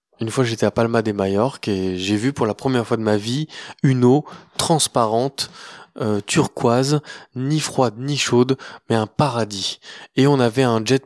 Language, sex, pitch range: French, male, 105-130 Hz